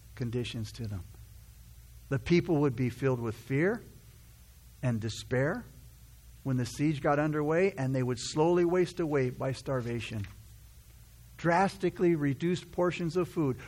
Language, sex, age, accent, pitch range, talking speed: English, male, 60-79, American, 110-175 Hz, 130 wpm